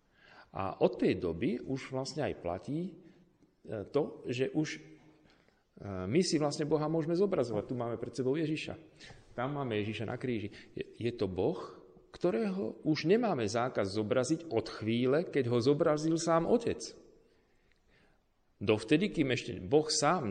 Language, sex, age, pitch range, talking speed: Slovak, male, 40-59, 110-155 Hz, 140 wpm